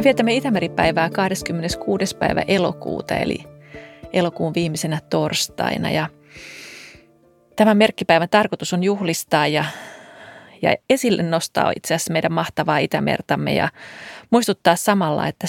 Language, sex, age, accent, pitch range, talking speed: Finnish, female, 30-49, native, 165-195 Hz, 110 wpm